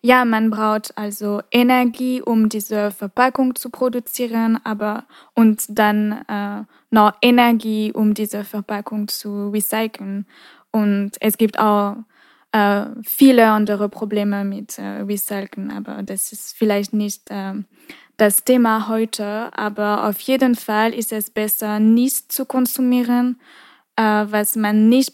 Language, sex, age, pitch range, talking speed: French, female, 10-29, 210-245 Hz, 130 wpm